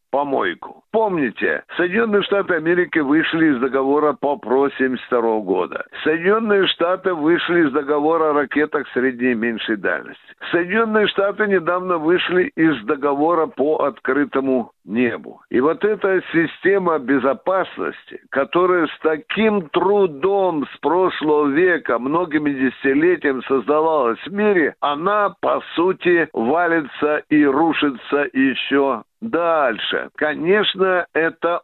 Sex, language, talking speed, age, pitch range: male, Russian, 110 wpm, 60-79, 145-200 Hz